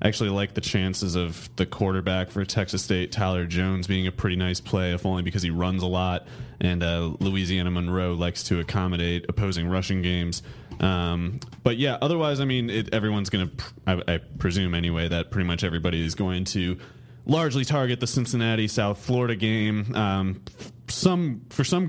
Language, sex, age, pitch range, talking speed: English, male, 30-49, 95-115 Hz, 175 wpm